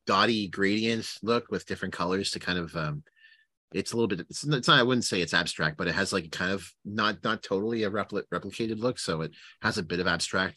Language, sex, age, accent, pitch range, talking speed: English, male, 30-49, American, 95-125 Hz, 235 wpm